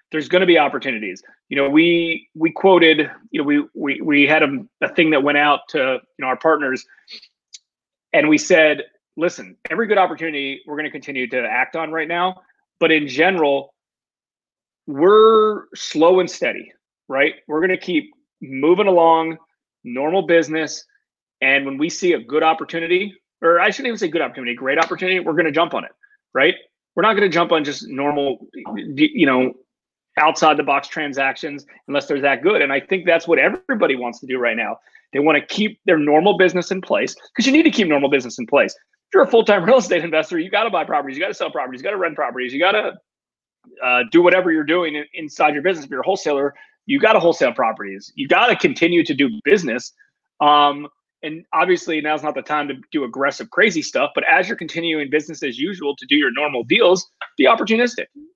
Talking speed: 200 wpm